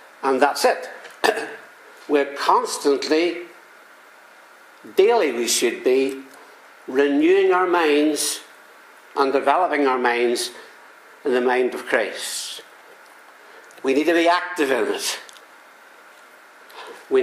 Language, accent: English, British